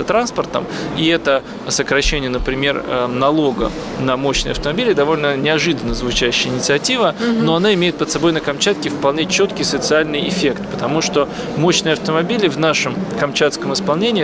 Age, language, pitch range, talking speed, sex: 20-39, Russian, 135-165 Hz, 135 wpm, male